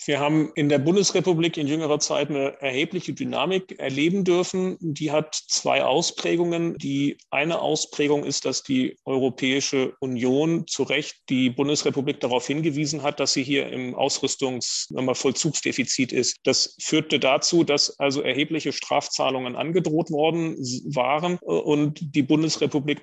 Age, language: 40-59, German